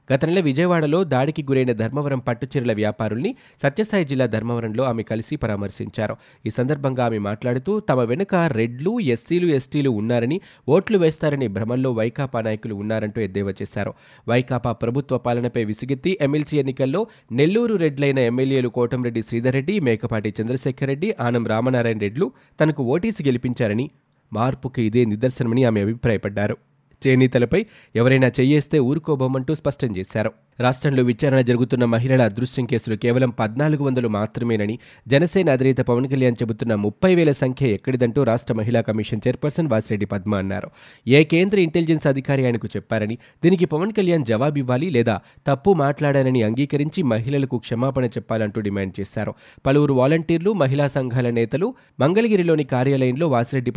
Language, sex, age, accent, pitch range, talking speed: Telugu, male, 20-39, native, 115-145 Hz, 125 wpm